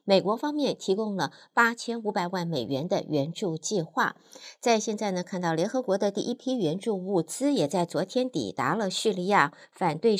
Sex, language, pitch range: female, Chinese, 175-235 Hz